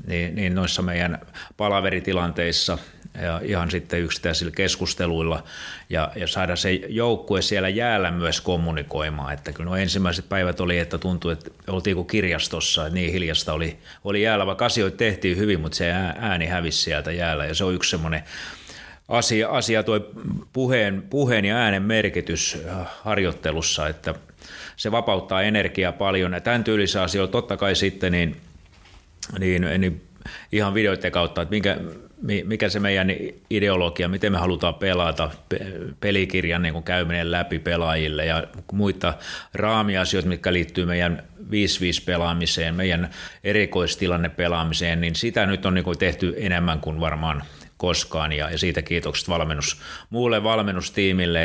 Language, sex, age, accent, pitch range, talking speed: Finnish, male, 30-49, native, 85-95 Hz, 140 wpm